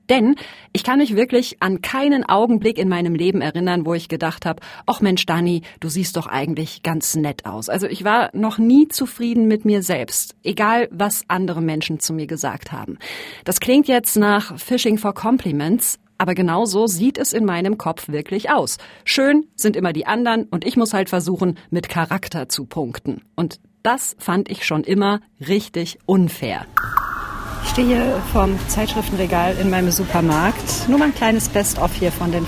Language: German